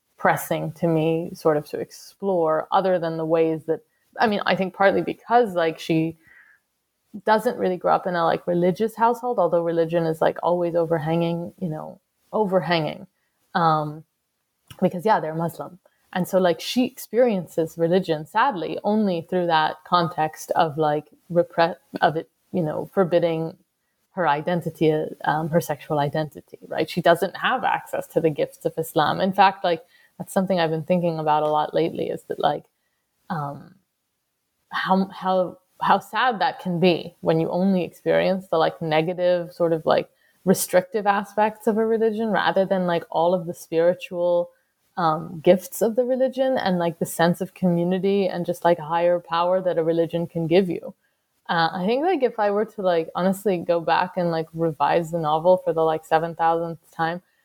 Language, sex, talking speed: English, female, 175 wpm